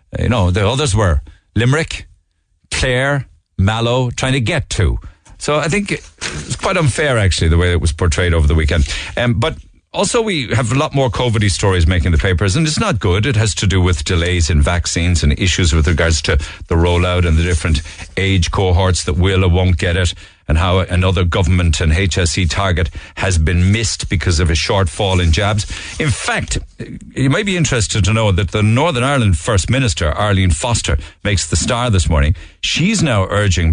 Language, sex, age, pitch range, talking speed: English, male, 50-69, 85-105 Hz, 195 wpm